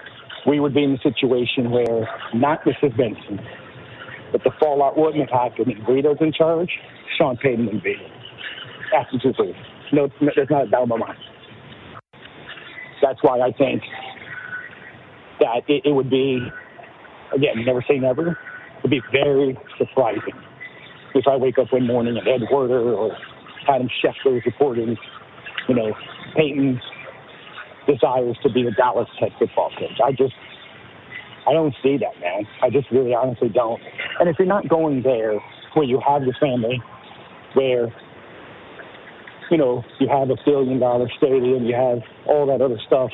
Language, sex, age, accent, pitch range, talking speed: English, male, 50-69, American, 125-150 Hz, 155 wpm